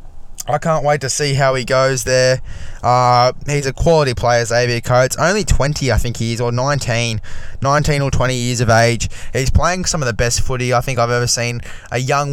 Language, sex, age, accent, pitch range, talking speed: English, male, 10-29, Australian, 120-145 Hz, 215 wpm